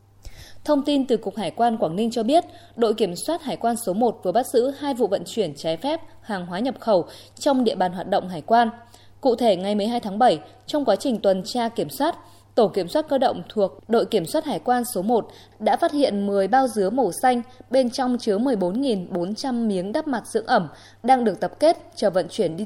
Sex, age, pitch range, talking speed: female, 20-39, 195-255 Hz, 235 wpm